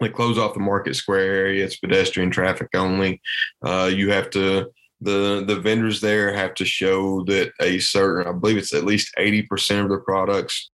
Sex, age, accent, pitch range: male, 20-39, American, 90-100 Hz